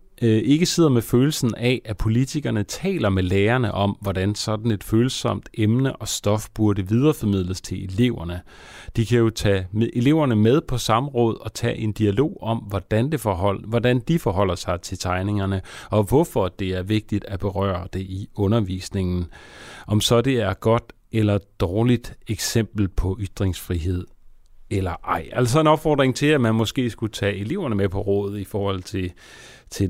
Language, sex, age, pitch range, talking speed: Danish, male, 30-49, 95-120 Hz, 165 wpm